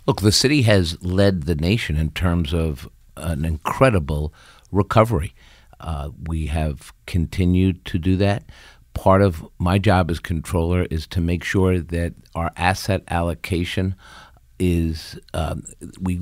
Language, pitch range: English, 80-95 Hz